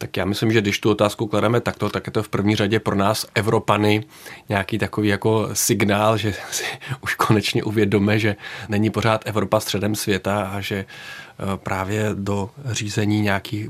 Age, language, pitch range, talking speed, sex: 30-49, Czech, 105-110 Hz, 170 wpm, male